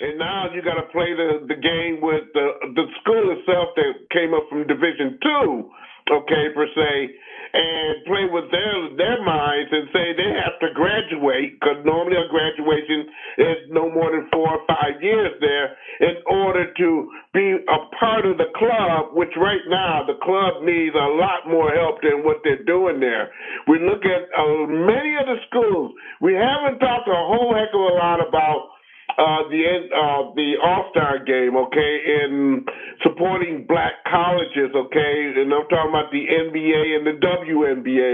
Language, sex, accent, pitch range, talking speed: English, male, American, 155-190 Hz, 175 wpm